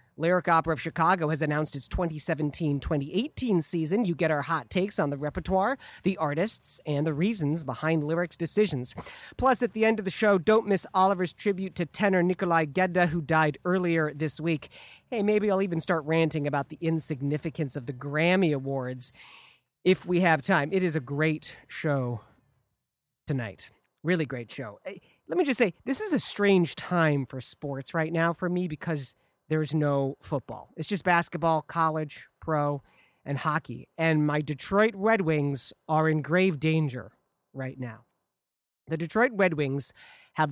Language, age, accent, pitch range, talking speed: English, 40-59, American, 145-185 Hz, 170 wpm